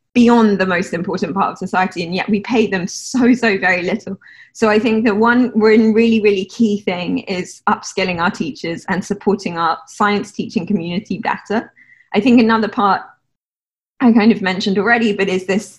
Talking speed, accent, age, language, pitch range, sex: 180 wpm, British, 20-39, English, 190-230 Hz, female